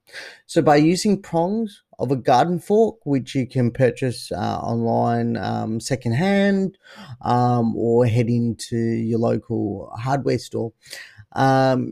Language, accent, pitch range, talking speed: English, Australian, 115-145 Hz, 125 wpm